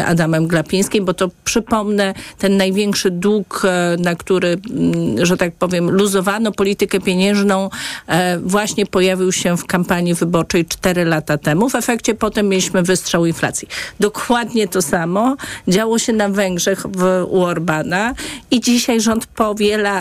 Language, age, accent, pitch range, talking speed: Polish, 40-59, native, 180-220 Hz, 130 wpm